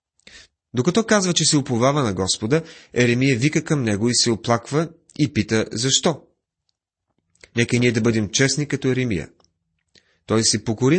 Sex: male